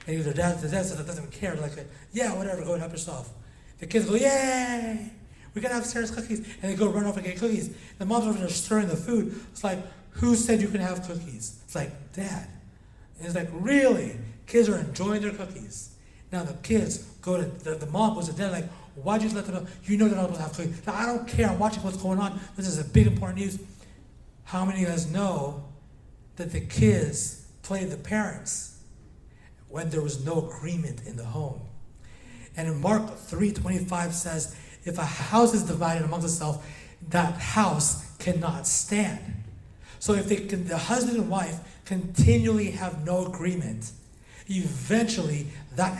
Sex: male